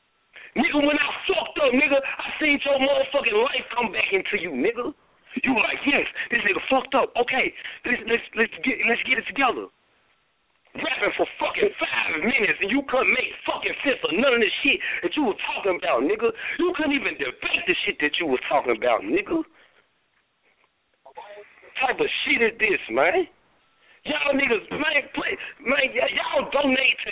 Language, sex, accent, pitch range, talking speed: English, male, American, 250-360 Hz, 185 wpm